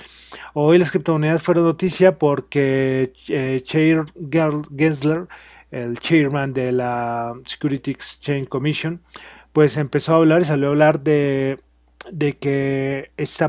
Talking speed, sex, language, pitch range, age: 125 wpm, male, Spanish, 135-165 Hz, 30-49